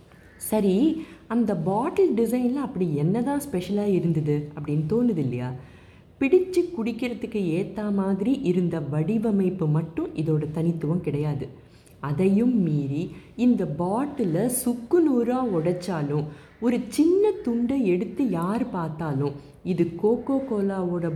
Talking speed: 100 wpm